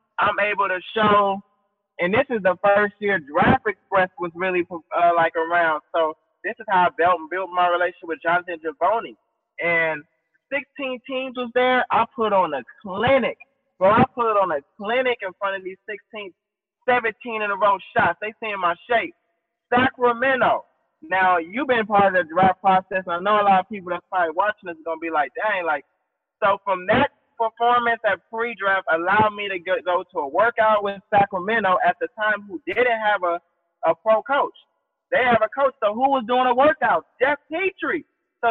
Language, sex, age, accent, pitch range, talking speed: English, male, 20-39, American, 175-240 Hz, 195 wpm